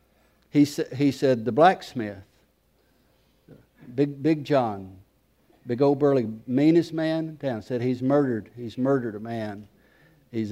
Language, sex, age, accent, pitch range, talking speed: English, male, 60-79, American, 120-140 Hz, 125 wpm